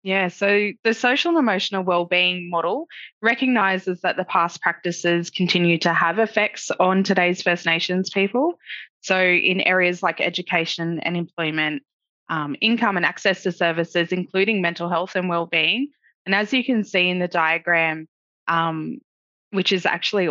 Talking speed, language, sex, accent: 155 wpm, English, female, Australian